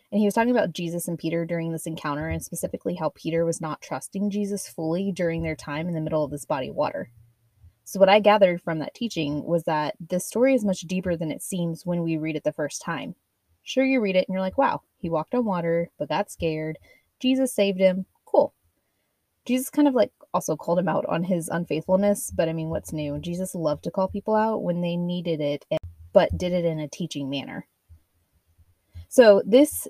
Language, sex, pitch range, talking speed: English, female, 155-195 Hz, 220 wpm